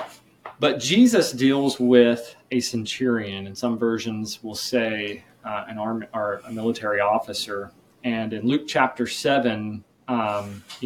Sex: male